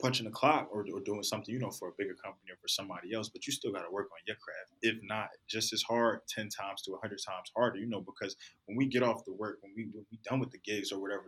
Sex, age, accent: male, 20-39, American